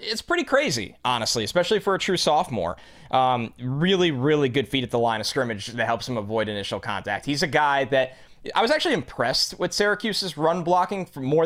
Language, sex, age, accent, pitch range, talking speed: English, male, 20-39, American, 120-155 Hz, 200 wpm